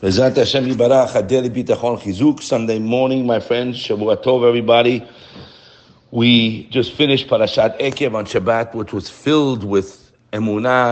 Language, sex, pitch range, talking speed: English, male, 105-125 Hz, 100 wpm